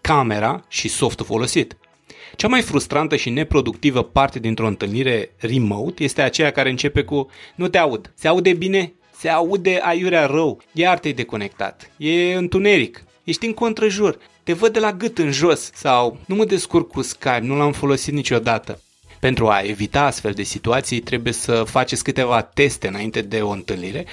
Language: Romanian